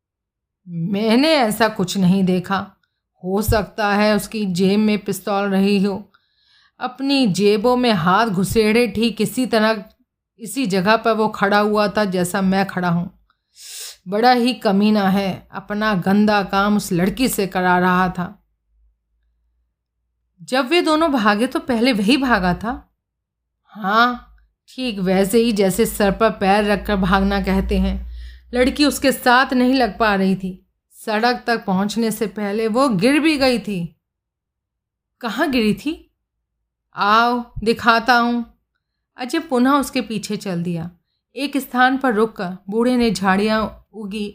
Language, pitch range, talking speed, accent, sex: Hindi, 190-235 Hz, 140 wpm, native, female